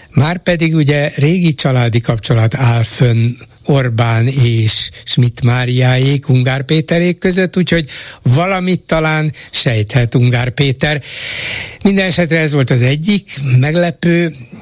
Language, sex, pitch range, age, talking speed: Hungarian, male, 115-150 Hz, 60-79, 110 wpm